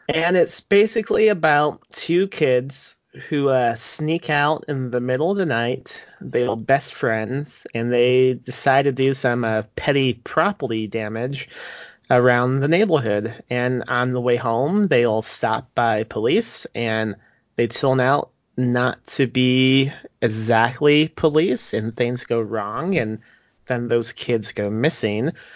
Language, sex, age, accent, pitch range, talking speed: English, male, 30-49, American, 115-145 Hz, 145 wpm